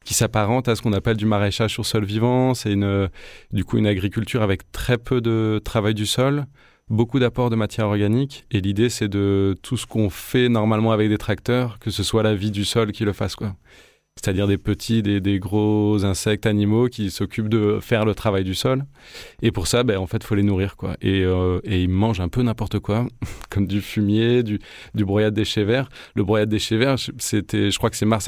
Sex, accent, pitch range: male, French, 100-115 Hz